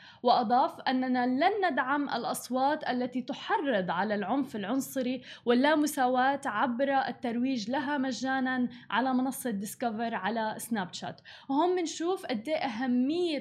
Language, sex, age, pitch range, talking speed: Arabic, female, 20-39, 230-270 Hz, 110 wpm